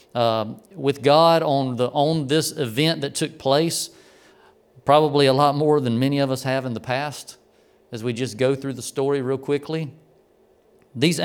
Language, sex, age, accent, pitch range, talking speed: English, male, 40-59, American, 135-165 Hz, 175 wpm